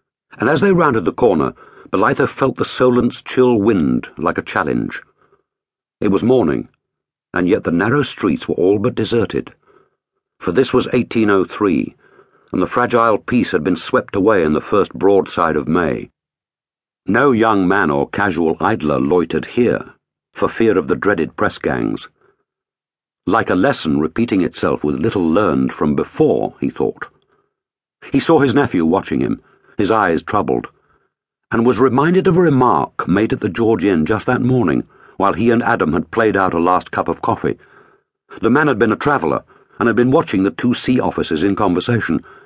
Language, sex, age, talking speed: English, male, 60-79, 175 wpm